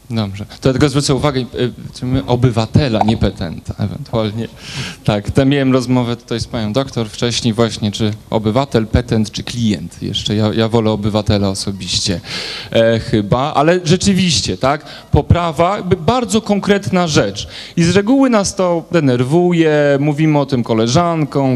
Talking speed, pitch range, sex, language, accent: 140 wpm, 125-165 Hz, male, Polish, native